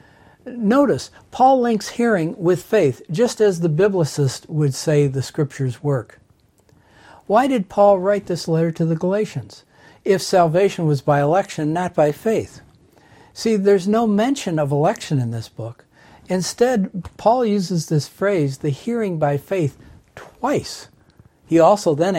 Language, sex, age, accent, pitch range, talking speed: English, male, 60-79, American, 145-210 Hz, 145 wpm